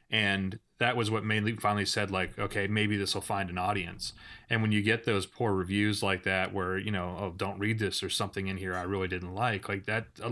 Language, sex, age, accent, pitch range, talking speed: English, male, 30-49, American, 100-115 Hz, 245 wpm